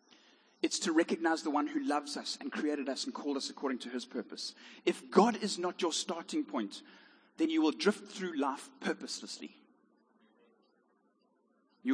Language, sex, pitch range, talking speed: English, male, 165-265 Hz, 165 wpm